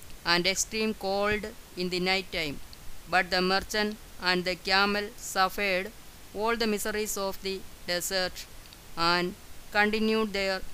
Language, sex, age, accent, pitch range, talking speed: Malayalam, female, 20-39, native, 180-210 Hz, 130 wpm